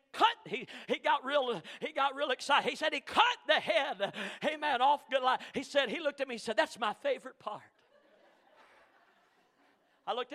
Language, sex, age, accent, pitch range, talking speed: English, male, 50-69, American, 260-340 Hz, 190 wpm